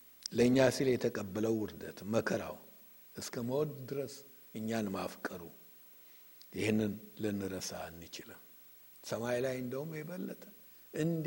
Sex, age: male, 60-79